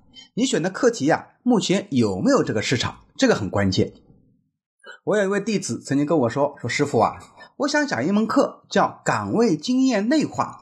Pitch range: 165-255 Hz